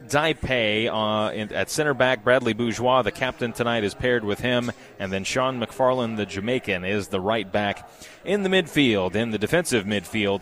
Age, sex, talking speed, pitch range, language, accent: 30-49, male, 180 wpm, 110-145 Hz, English, American